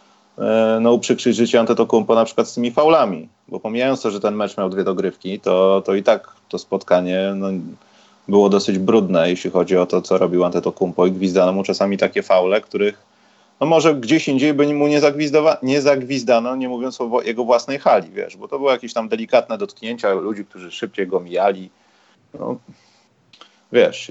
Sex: male